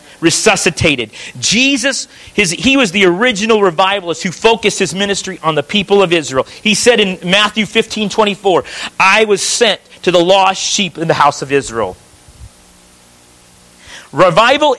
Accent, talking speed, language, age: American, 145 wpm, English, 40-59